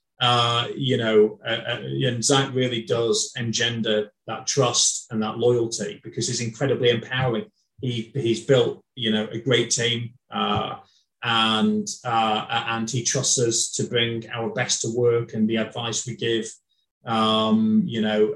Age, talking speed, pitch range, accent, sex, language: 30-49, 155 wpm, 110-130 Hz, British, male, English